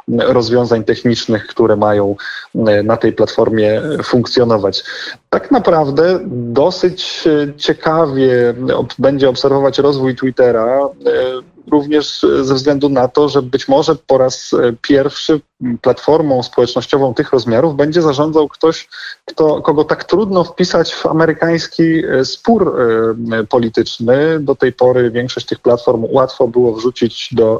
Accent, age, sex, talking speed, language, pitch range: native, 20-39, male, 115 wpm, Polish, 115-150 Hz